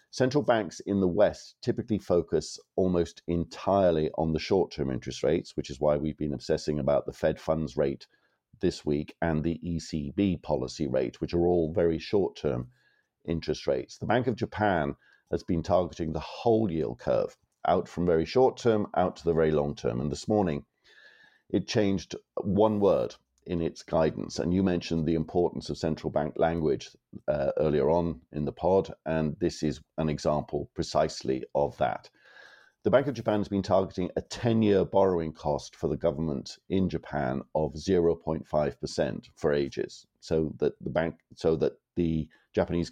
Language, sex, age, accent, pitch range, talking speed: English, male, 50-69, British, 75-95 Hz, 175 wpm